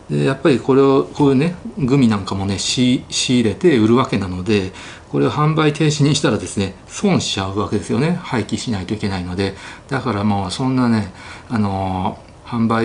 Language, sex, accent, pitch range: Japanese, male, native, 100-135 Hz